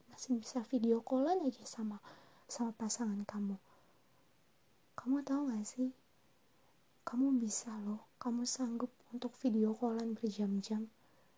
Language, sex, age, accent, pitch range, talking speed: Indonesian, female, 20-39, native, 225-265 Hz, 115 wpm